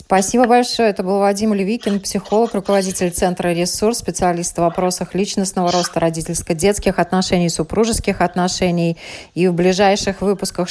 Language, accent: Russian, native